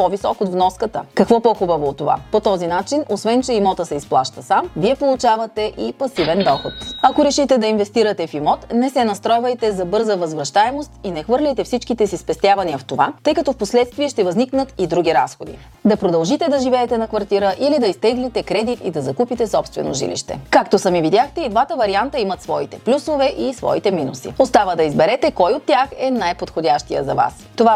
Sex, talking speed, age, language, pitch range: female, 190 wpm, 30-49, Bulgarian, 175-245 Hz